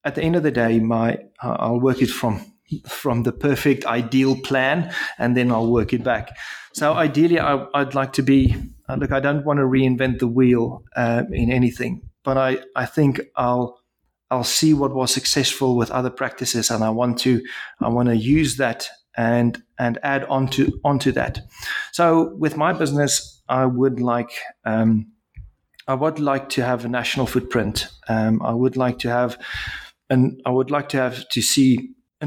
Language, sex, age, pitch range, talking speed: English, male, 30-49, 120-135 Hz, 190 wpm